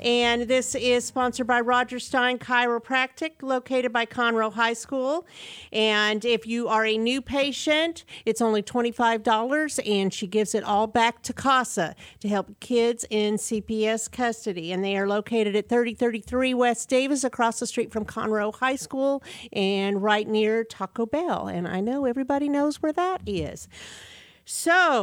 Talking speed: 160 wpm